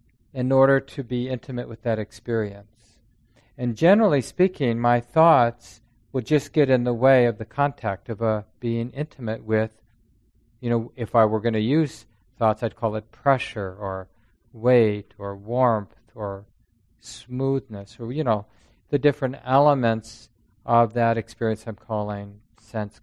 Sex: male